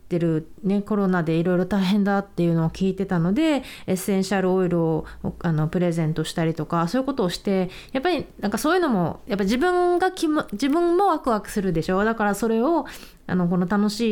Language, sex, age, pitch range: Japanese, female, 20-39, 180-255 Hz